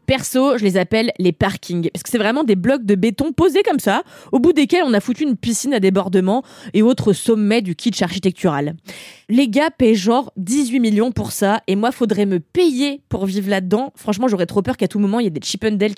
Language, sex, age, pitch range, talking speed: French, female, 20-39, 195-275 Hz, 230 wpm